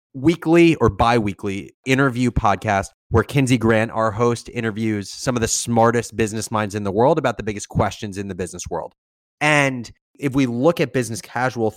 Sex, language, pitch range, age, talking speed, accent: male, English, 110-135 Hz, 20-39, 180 wpm, American